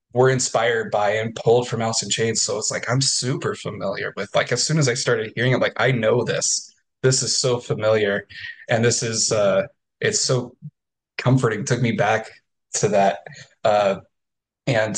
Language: English